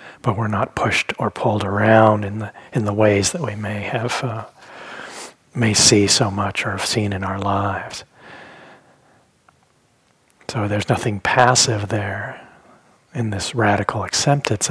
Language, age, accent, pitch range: English, 40-59, American, 105-120 Hz